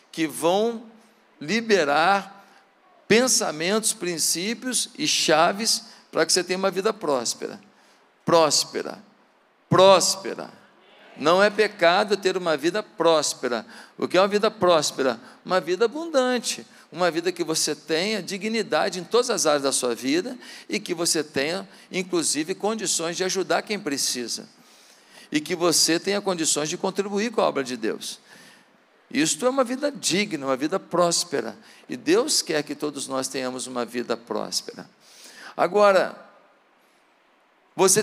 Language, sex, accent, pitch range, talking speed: Portuguese, male, Brazilian, 165-220 Hz, 135 wpm